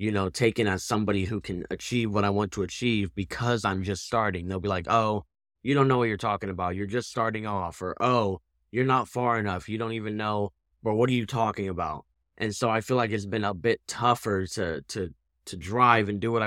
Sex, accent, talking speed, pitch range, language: male, American, 235 wpm, 95-115 Hz, English